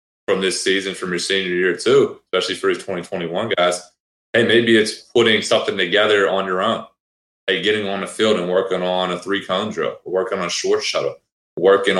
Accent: American